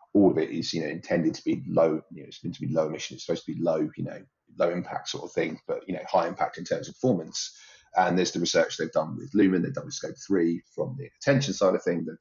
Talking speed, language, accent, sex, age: 290 wpm, English, British, male, 30-49